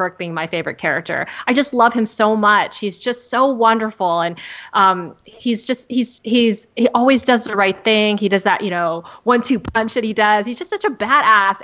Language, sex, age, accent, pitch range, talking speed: English, female, 20-39, American, 180-225 Hz, 220 wpm